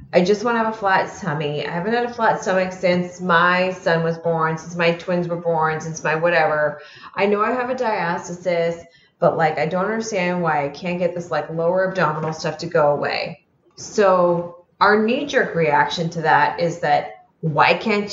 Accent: American